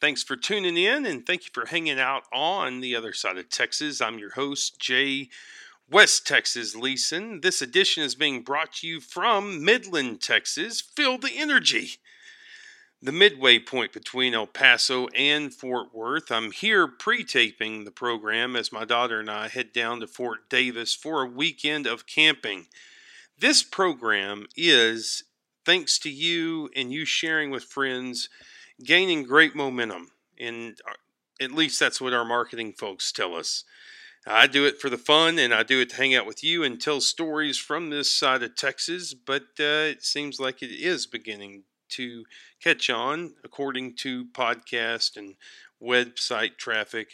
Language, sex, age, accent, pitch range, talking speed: English, male, 40-59, American, 120-165 Hz, 165 wpm